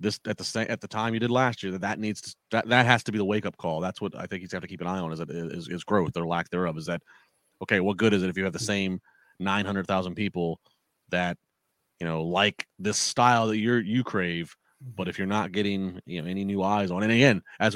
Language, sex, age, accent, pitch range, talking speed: English, male, 30-49, American, 90-110 Hz, 275 wpm